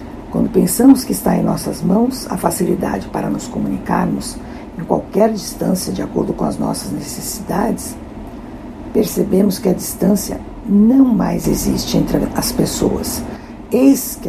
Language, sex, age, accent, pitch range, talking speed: Portuguese, female, 60-79, Brazilian, 190-235 Hz, 140 wpm